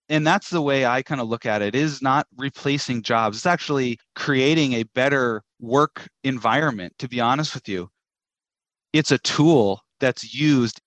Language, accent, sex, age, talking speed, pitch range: English, American, male, 30-49, 175 wpm, 120-145 Hz